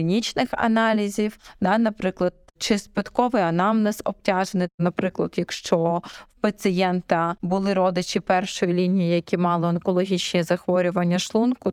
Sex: female